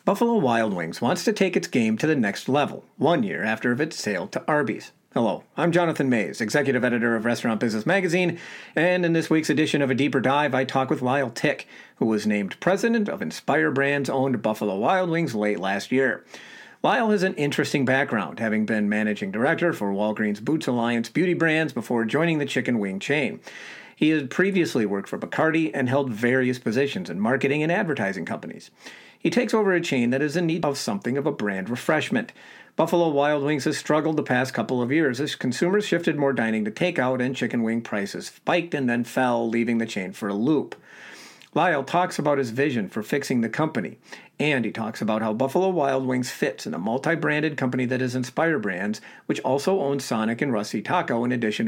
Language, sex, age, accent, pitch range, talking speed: English, male, 50-69, American, 120-170 Hz, 200 wpm